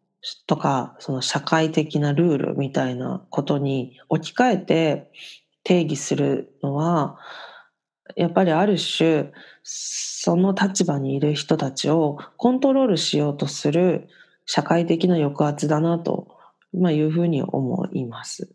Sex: female